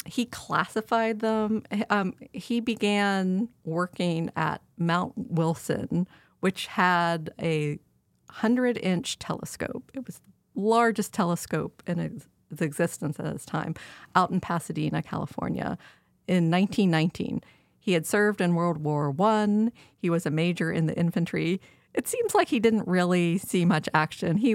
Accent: American